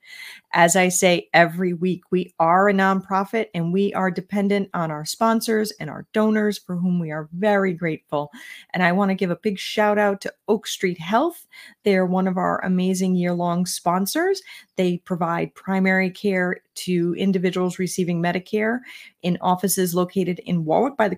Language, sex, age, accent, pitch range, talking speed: English, female, 30-49, American, 175-215 Hz, 175 wpm